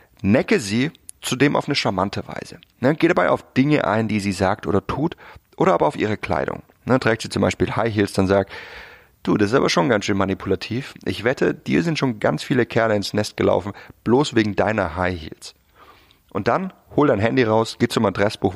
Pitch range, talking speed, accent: 95-125 Hz, 205 wpm, German